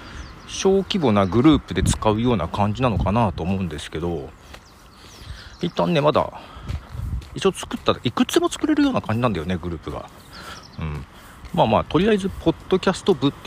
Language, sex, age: Japanese, male, 40-59